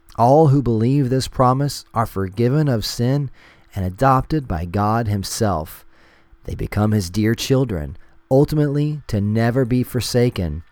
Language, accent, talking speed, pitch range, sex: English, American, 135 wpm, 90-120 Hz, male